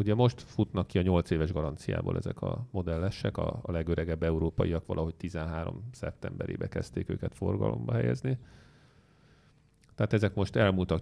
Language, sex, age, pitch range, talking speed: English, male, 40-59, 80-105 Hz, 135 wpm